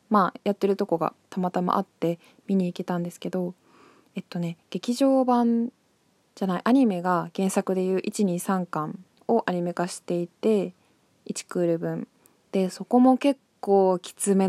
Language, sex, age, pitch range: Japanese, female, 20-39, 175-215 Hz